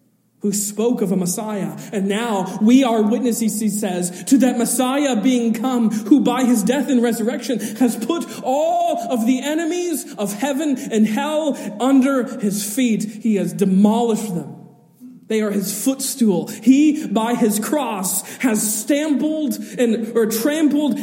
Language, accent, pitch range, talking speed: English, American, 190-255 Hz, 150 wpm